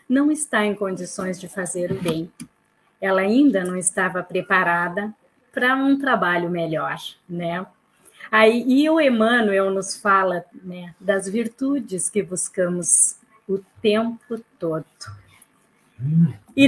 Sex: female